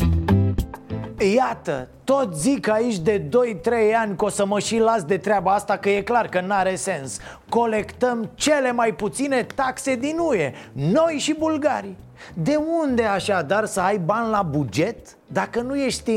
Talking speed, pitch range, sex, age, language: 165 wpm, 190-255 Hz, male, 30-49, Romanian